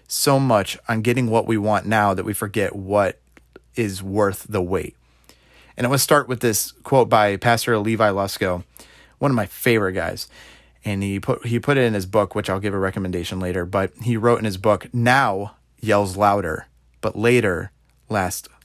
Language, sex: English, male